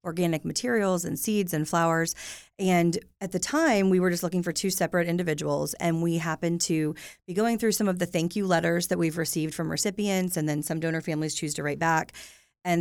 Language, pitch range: English, 155-185 Hz